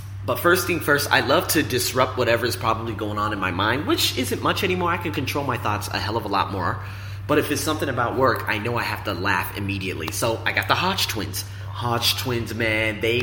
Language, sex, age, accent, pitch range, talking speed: English, male, 30-49, American, 100-115 Hz, 245 wpm